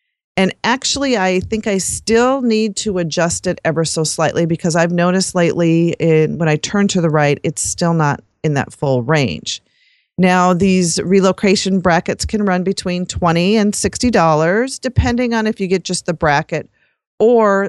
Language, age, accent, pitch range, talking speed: English, 40-59, American, 165-215 Hz, 165 wpm